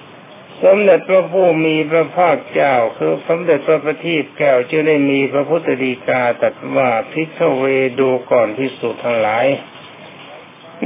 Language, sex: Thai, male